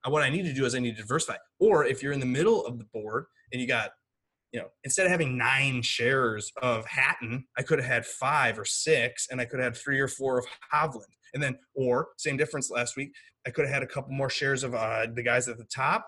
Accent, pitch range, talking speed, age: American, 125-160 Hz, 260 wpm, 20-39